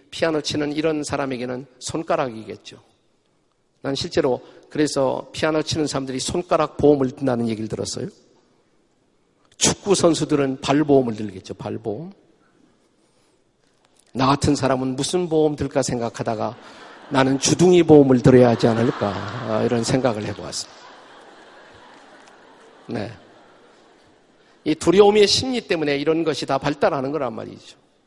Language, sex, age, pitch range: Korean, male, 50-69, 120-155 Hz